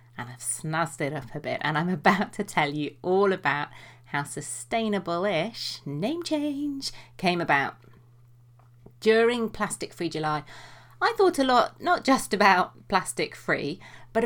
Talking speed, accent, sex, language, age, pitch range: 145 wpm, British, female, English, 30-49, 135-200 Hz